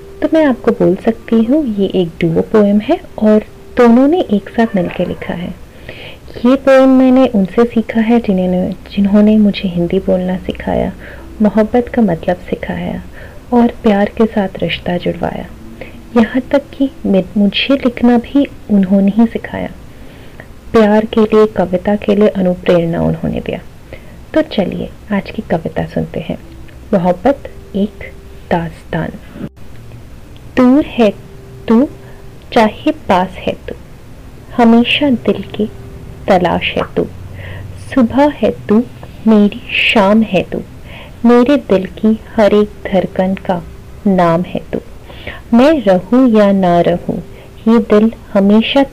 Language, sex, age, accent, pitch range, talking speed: Hindi, female, 30-49, native, 195-240 Hz, 120 wpm